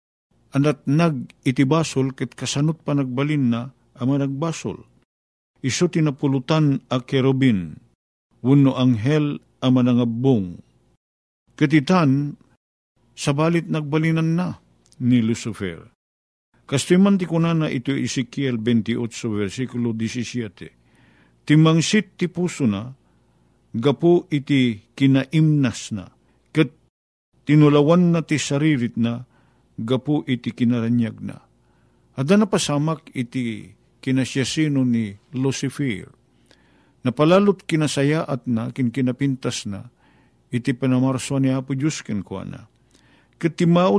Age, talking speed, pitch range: 50-69, 95 wpm, 115-155 Hz